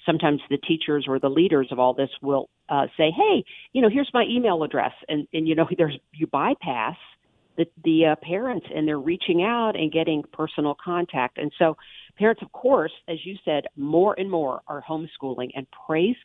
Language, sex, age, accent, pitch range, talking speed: English, female, 50-69, American, 140-165 Hz, 195 wpm